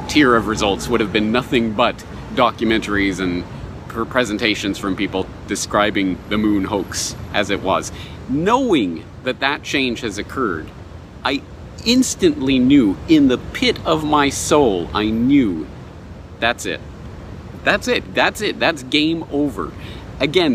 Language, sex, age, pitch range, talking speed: English, male, 40-59, 105-150 Hz, 140 wpm